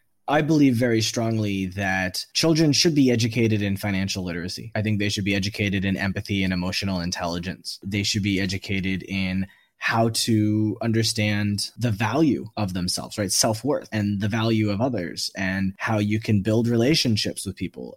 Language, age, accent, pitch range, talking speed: English, 20-39, American, 100-145 Hz, 165 wpm